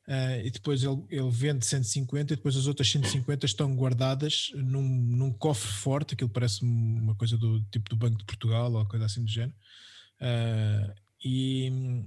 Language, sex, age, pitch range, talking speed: Portuguese, male, 20-39, 115-140 Hz, 165 wpm